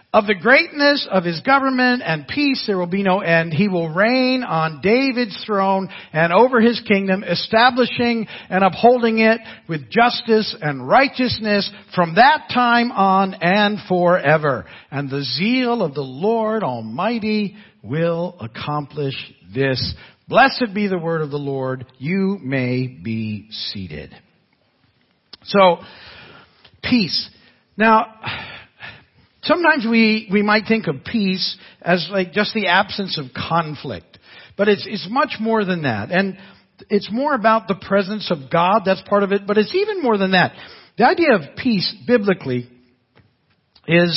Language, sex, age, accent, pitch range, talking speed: English, male, 50-69, American, 155-220 Hz, 145 wpm